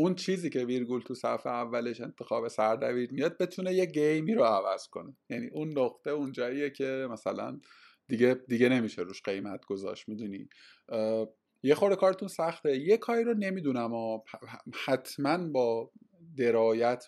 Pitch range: 110-145 Hz